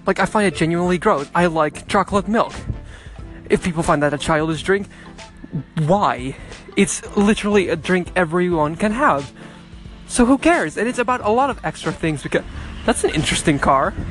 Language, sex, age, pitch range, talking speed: English, male, 20-39, 150-205 Hz, 175 wpm